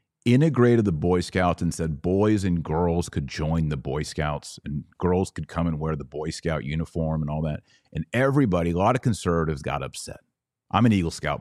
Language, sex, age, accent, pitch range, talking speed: English, male, 30-49, American, 85-120 Hz, 205 wpm